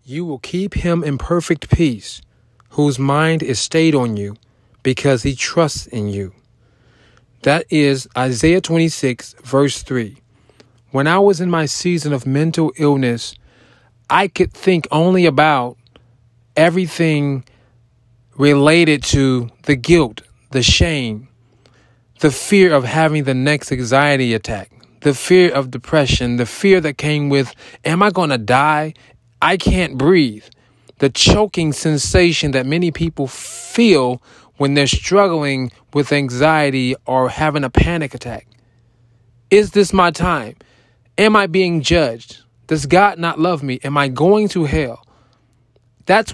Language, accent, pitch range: English, American, 120-160 Hz